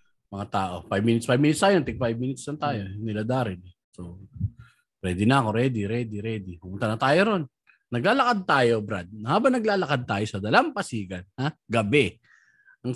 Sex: male